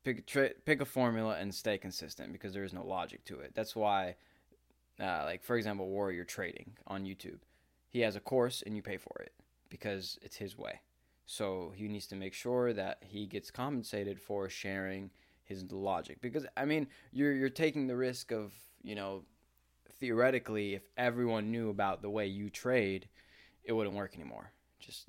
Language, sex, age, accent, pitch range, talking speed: English, male, 20-39, American, 90-110 Hz, 185 wpm